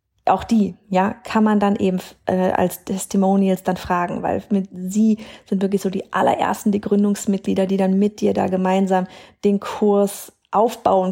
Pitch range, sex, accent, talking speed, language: 190-220 Hz, female, German, 160 wpm, German